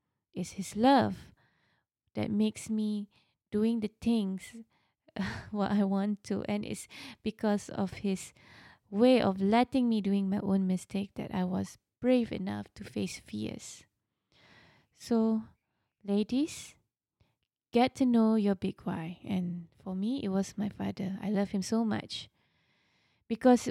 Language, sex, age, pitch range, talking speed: English, female, 20-39, 190-245 Hz, 140 wpm